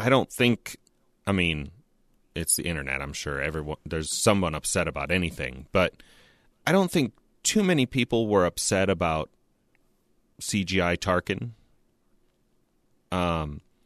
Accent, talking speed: American, 125 wpm